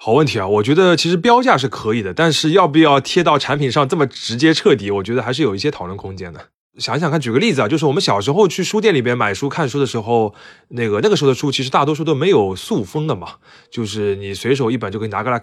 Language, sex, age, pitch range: Chinese, male, 20-39, 110-150 Hz